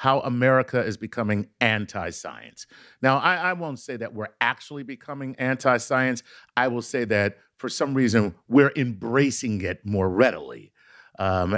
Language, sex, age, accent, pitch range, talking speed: English, male, 50-69, American, 115-150 Hz, 145 wpm